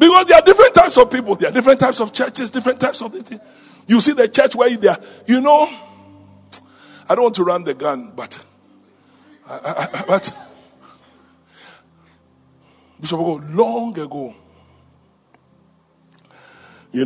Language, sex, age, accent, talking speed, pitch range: English, male, 60-79, Nigerian, 155 wpm, 155-265 Hz